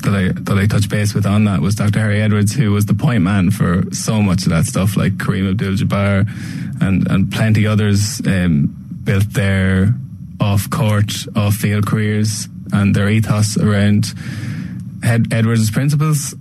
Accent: Irish